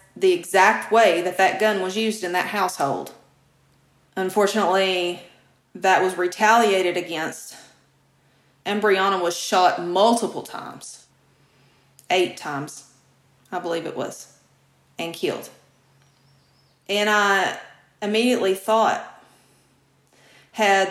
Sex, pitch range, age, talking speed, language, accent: female, 160-205 Hz, 30-49, 100 wpm, English, American